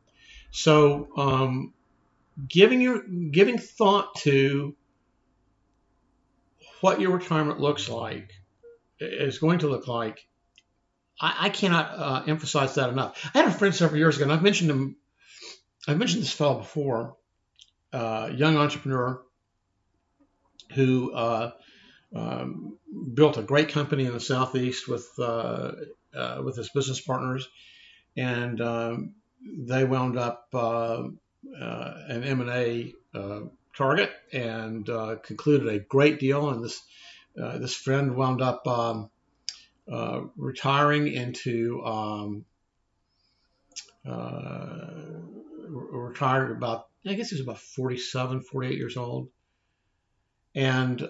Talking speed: 120 wpm